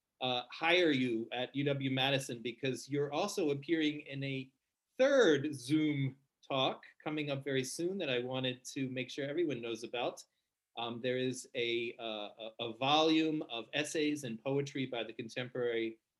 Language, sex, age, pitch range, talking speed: English, male, 40-59, 120-145 Hz, 150 wpm